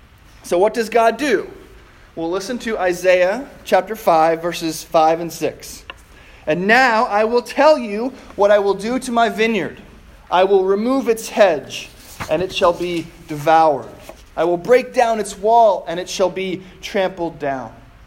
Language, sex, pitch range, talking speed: English, male, 165-215 Hz, 165 wpm